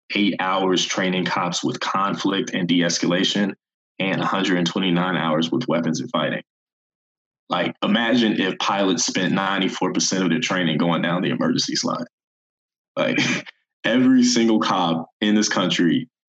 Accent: American